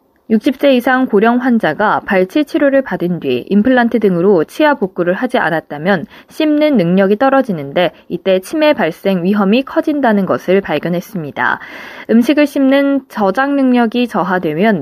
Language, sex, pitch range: Korean, female, 185-270 Hz